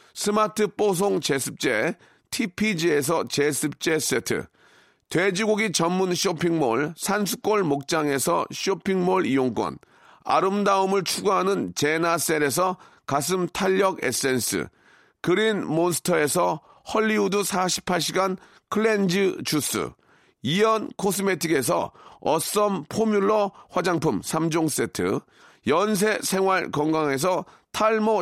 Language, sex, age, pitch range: Korean, male, 40-59, 160-205 Hz